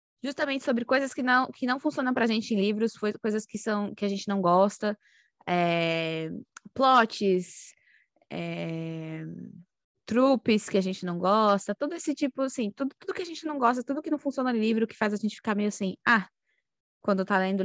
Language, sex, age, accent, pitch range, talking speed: Portuguese, female, 20-39, Brazilian, 190-240 Hz, 195 wpm